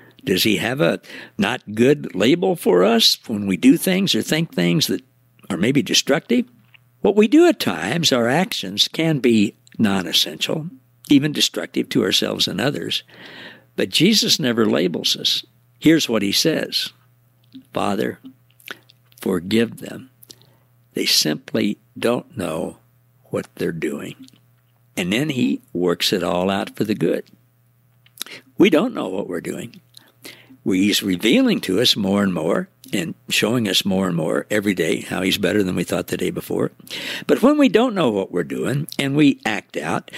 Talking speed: 160 wpm